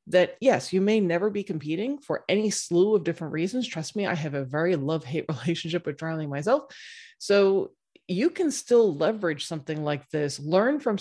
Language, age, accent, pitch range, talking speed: English, 30-49, American, 155-205 Hz, 190 wpm